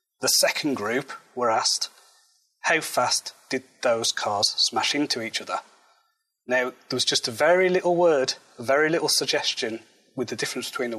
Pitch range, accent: 130-170 Hz, British